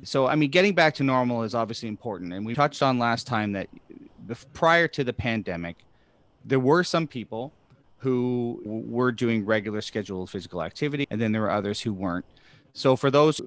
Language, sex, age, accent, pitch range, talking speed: English, male, 30-49, American, 105-130 Hz, 185 wpm